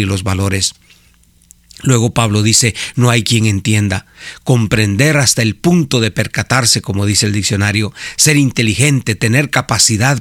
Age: 40-59